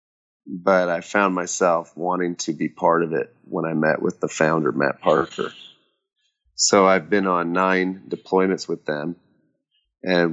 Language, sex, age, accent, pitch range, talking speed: English, male, 30-49, American, 85-95 Hz, 155 wpm